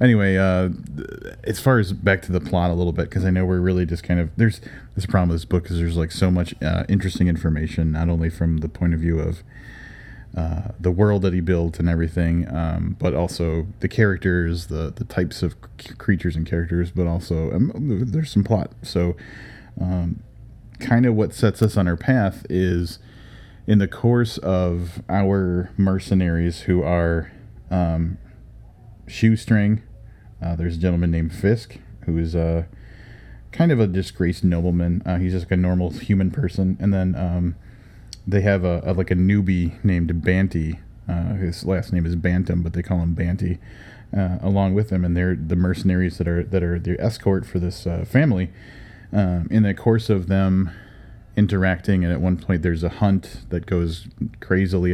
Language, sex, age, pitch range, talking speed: English, male, 30-49, 85-105 Hz, 185 wpm